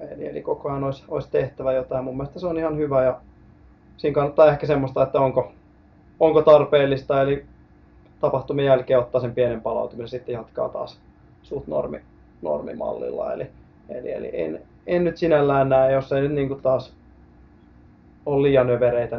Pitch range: 130-160 Hz